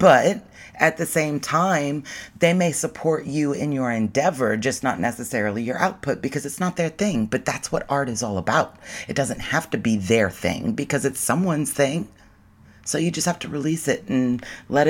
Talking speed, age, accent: 195 wpm, 30-49, American